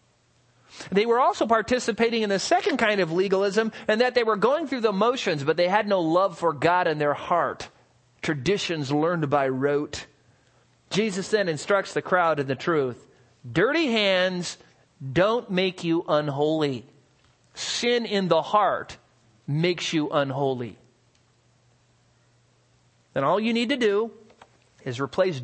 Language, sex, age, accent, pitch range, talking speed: English, male, 40-59, American, 125-185 Hz, 145 wpm